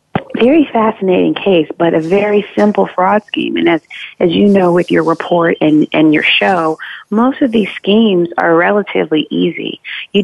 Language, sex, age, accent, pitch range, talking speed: English, female, 40-59, American, 160-205 Hz, 170 wpm